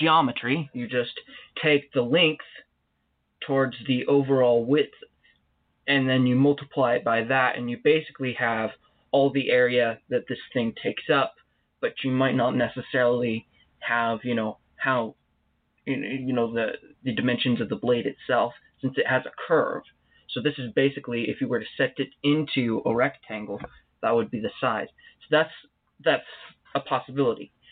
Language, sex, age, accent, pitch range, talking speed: English, male, 20-39, American, 120-140 Hz, 160 wpm